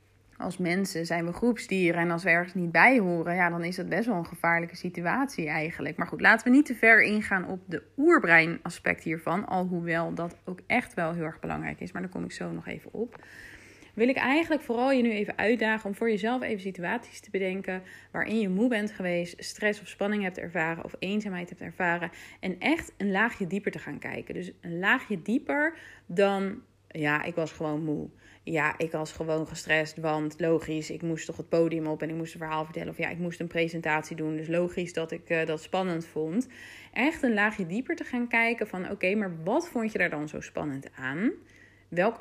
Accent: Dutch